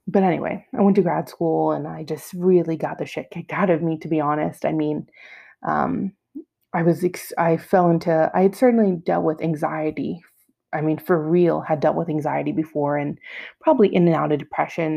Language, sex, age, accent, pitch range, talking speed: English, female, 20-39, American, 150-180 Hz, 205 wpm